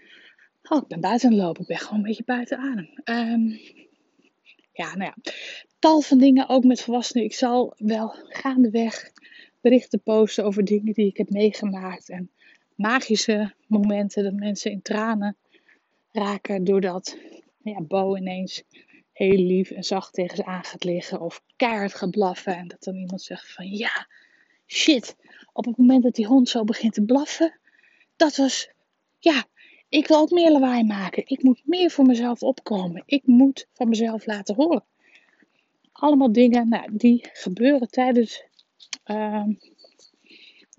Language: Dutch